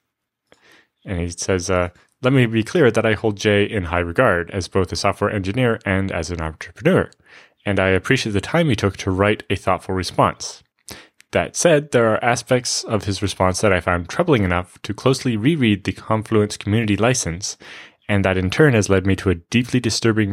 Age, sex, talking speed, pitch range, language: 20-39, male, 200 wpm, 90-110 Hz, English